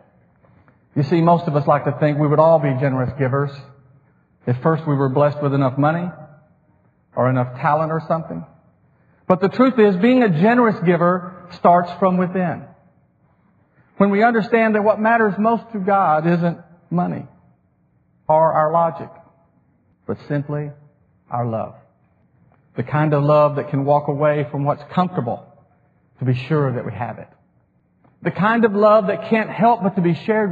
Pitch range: 145-195 Hz